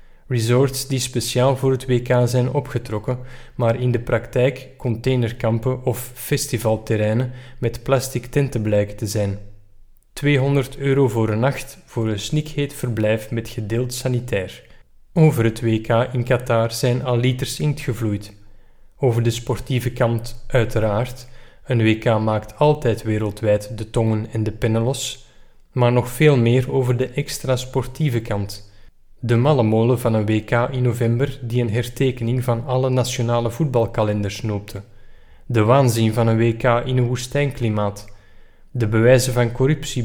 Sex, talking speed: male, 140 wpm